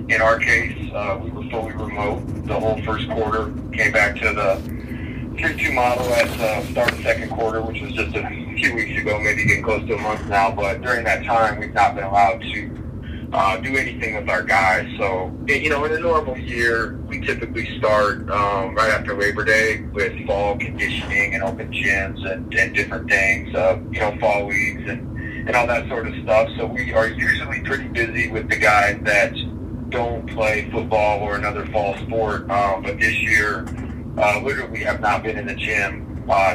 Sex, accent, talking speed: male, American, 200 wpm